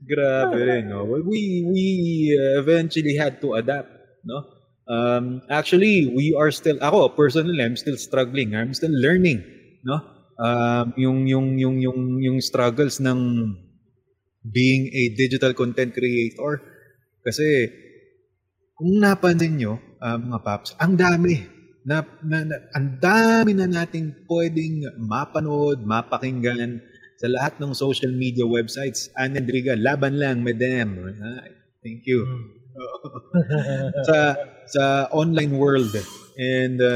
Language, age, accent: Filipino, 20-39, native